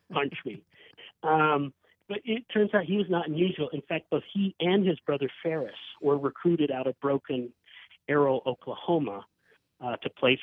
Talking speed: 160 wpm